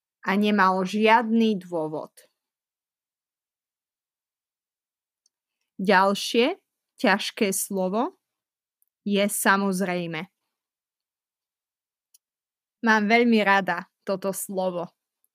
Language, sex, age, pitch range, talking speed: Slovak, female, 20-39, 185-225 Hz, 55 wpm